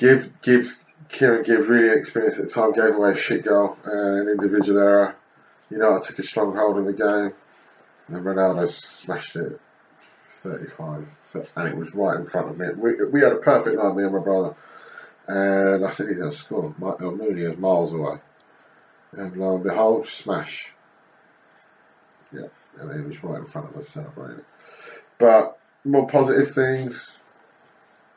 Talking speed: 175 wpm